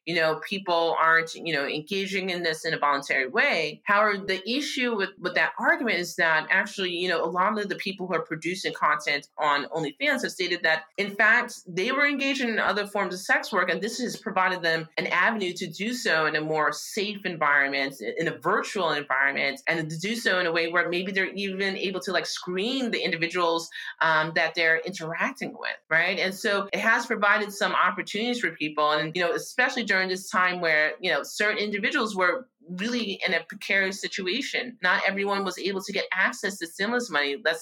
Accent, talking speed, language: American, 205 wpm, English